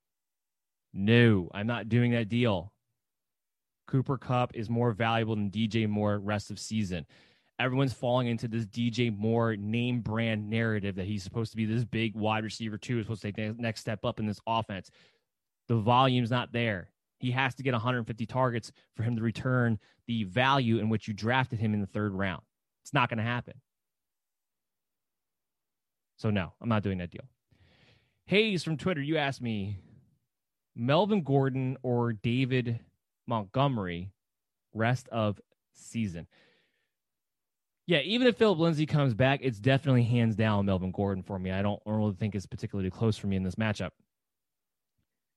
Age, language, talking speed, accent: 20-39, English, 165 wpm, American